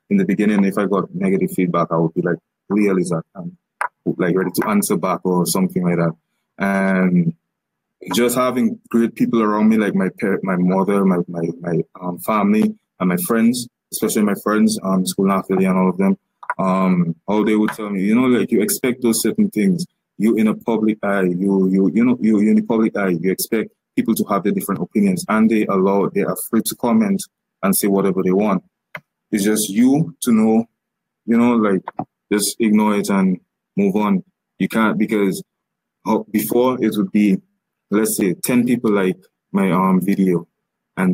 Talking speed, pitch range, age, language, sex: 195 wpm, 95-125 Hz, 20-39, English, male